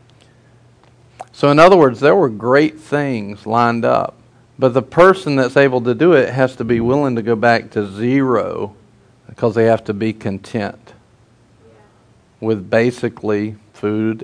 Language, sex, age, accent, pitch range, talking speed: English, male, 50-69, American, 115-135 Hz, 150 wpm